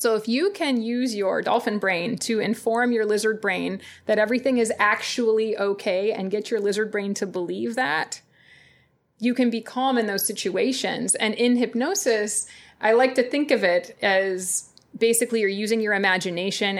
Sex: female